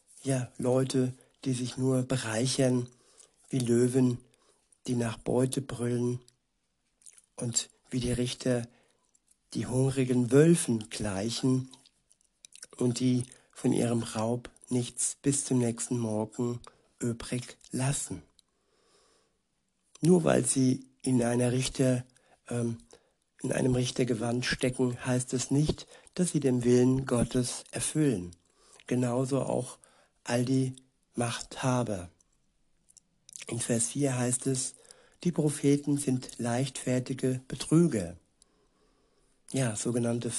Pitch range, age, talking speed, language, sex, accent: 120-130 Hz, 60-79, 105 wpm, German, male, German